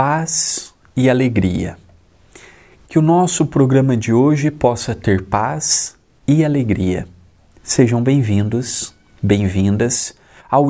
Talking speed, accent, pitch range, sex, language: 100 wpm, Brazilian, 100-140 Hz, male, Portuguese